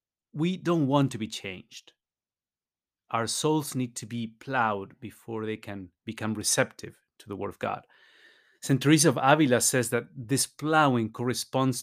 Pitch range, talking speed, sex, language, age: 115-145 Hz, 155 wpm, male, English, 30-49